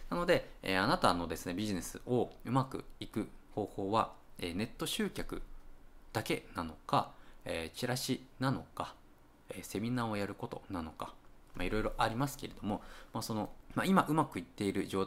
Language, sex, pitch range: Japanese, male, 95-135 Hz